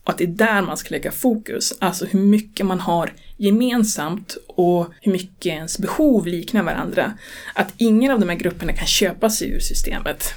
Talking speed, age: 190 wpm, 20-39